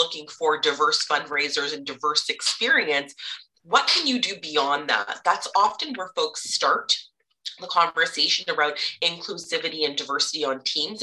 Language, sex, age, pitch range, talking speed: English, female, 20-39, 170-285 Hz, 140 wpm